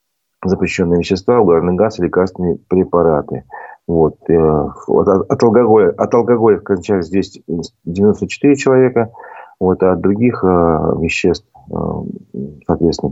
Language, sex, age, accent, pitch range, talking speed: Russian, male, 40-59, native, 90-105 Hz, 95 wpm